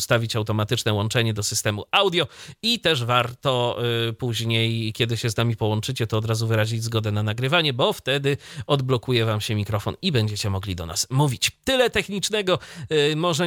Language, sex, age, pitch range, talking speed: Polish, male, 30-49, 125-175 Hz, 165 wpm